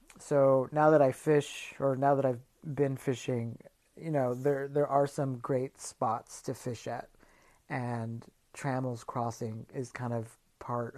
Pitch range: 125-145 Hz